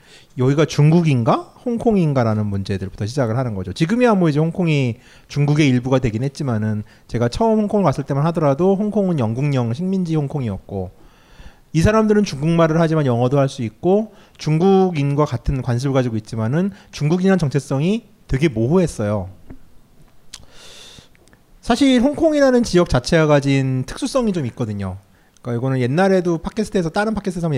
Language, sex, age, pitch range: Korean, male, 30-49, 125-200 Hz